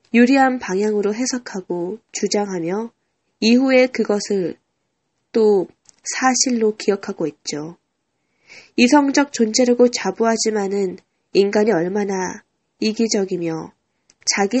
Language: Korean